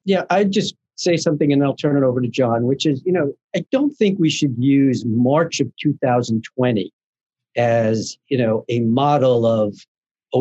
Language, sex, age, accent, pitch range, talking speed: English, male, 50-69, American, 115-150 Hz, 185 wpm